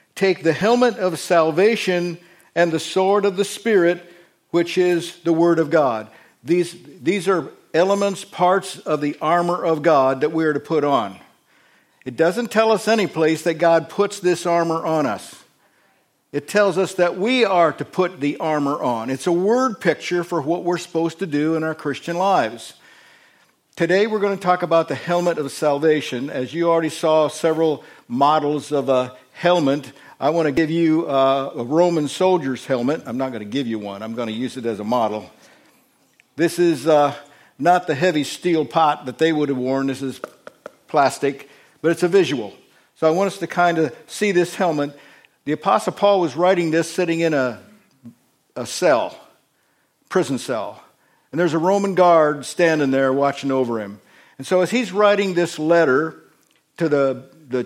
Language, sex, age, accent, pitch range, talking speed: English, male, 50-69, American, 145-180 Hz, 185 wpm